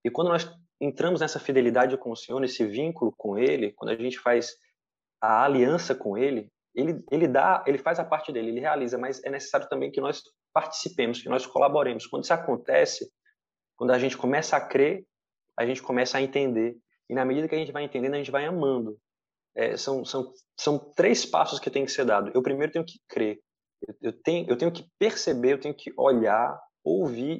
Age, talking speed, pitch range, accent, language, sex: 20-39, 210 wpm, 125-165 Hz, Brazilian, Portuguese, male